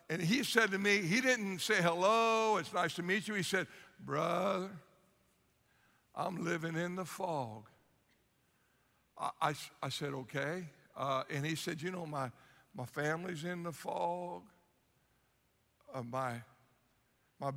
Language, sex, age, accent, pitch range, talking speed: English, male, 60-79, American, 160-195 Hz, 145 wpm